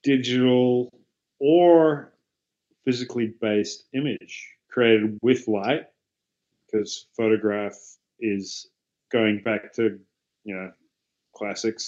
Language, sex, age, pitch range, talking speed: English, male, 30-49, 105-125 Hz, 85 wpm